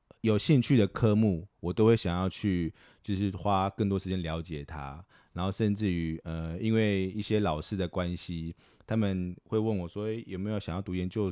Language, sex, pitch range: Chinese, male, 85-110 Hz